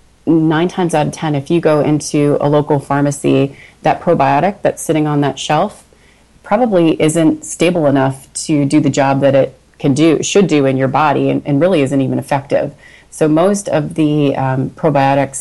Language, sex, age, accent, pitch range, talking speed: English, female, 30-49, American, 135-155 Hz, 185 wpm